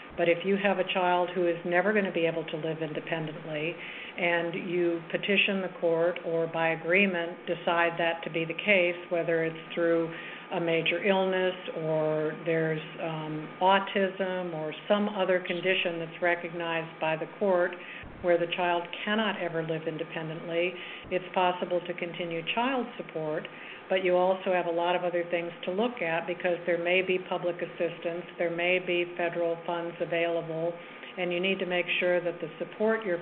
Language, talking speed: English, 175 wpm